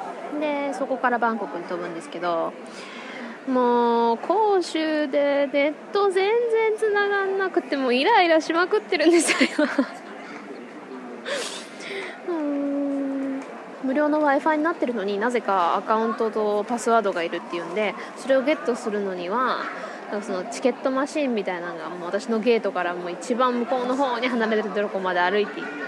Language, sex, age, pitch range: Japanese, female, 20-39, 205-295 Hz